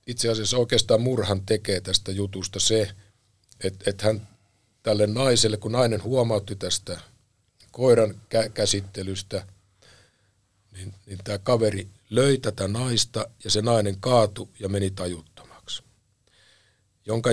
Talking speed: 115 wpm